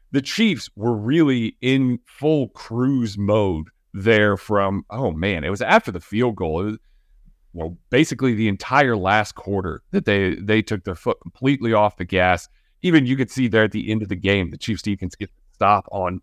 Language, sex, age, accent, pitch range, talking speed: English, male, 30-49, American, 95-125 Hz, 200 wpm